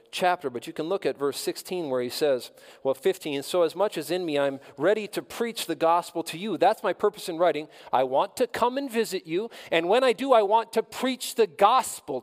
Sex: male